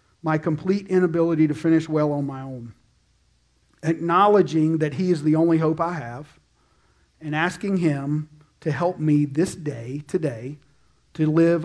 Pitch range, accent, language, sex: 145-175 Hz, American, English, male